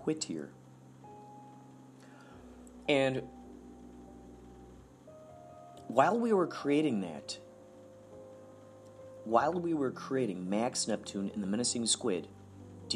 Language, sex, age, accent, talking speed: English, male, 40-59, American, 90 wpm